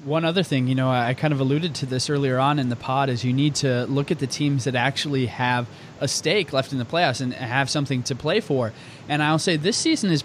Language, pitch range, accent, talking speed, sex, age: English, 130-155 Hz, American, 265 wpm, male, 20-39